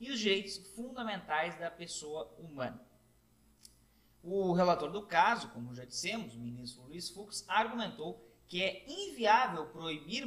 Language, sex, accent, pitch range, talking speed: Portuguese, male, Brazilian, 155-210 Hz, 135 wpm